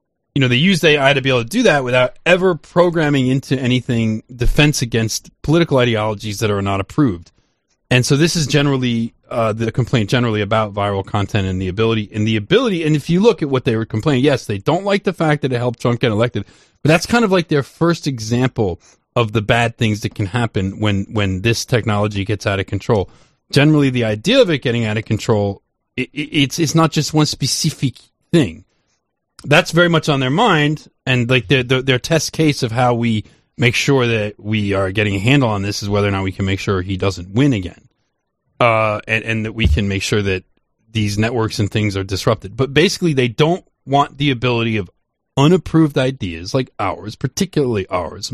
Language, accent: English, American